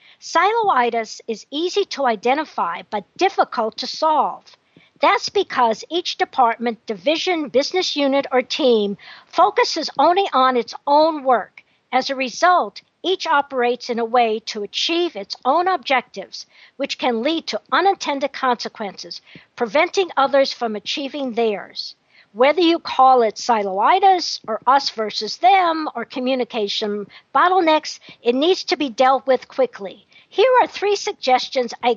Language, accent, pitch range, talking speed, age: English, American, 240-350 Hz, 135 wpm, 50-69